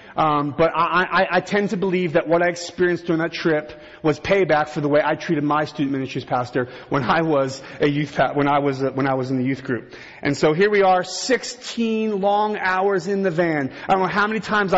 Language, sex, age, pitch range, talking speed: English, male, 30-49, 145-195 Hz, 240 wpm